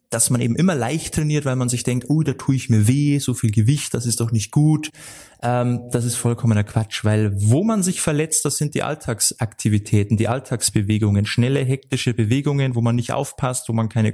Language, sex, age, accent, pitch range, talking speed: German, male, 20-39, German, 115-145 Hz, 210 wpm